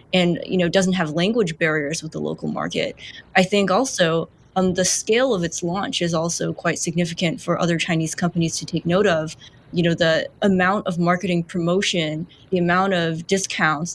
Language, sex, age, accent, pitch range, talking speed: English, female, 20-39, American, 165-185 Hz, 190 wpm